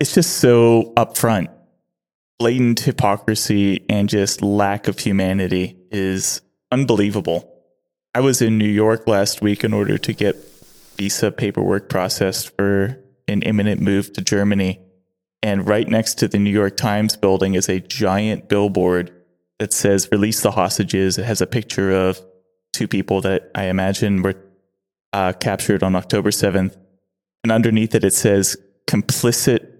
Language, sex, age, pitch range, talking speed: English, male, 20-39, 95-110 Hz, 145 wpm